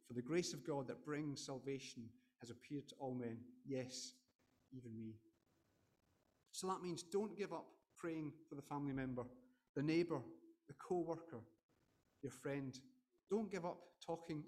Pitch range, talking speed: 125-165 Hz, 155 wpm